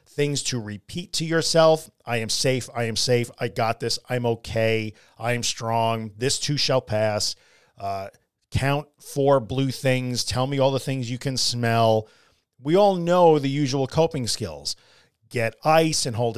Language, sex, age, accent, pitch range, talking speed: English, male, 40-59, American, 115-145 Hz, 170 wpm